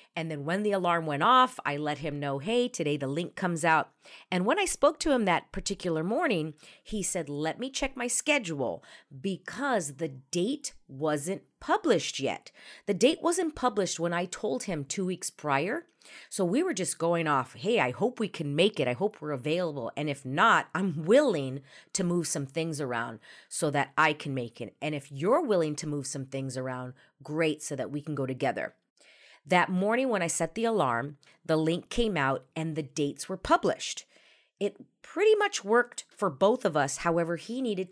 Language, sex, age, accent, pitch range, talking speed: English, female, 40-59, American, 150-210 Hz, 200 wpm